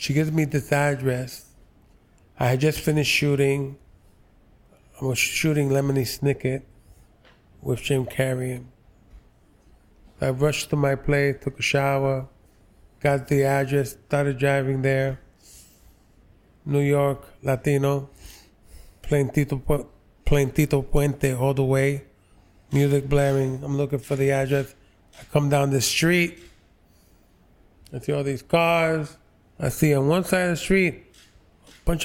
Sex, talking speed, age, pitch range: male, 130 wpm, 20-39, 115-150 Hz